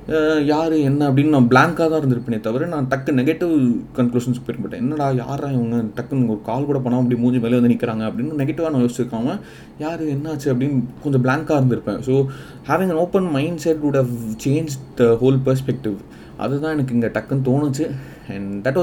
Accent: native